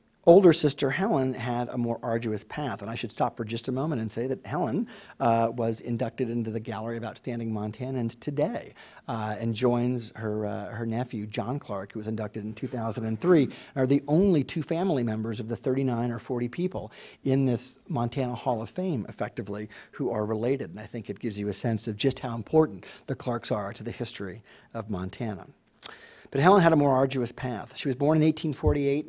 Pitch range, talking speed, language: 115-140 Hz, 200 wpm, English